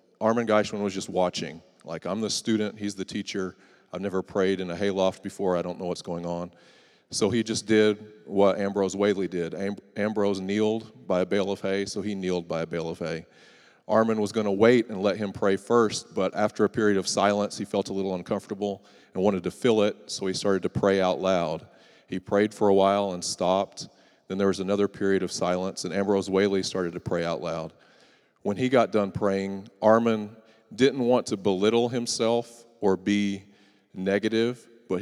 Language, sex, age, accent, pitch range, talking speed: English, male, 40-59, American, 95-105 Hz, 200 wpm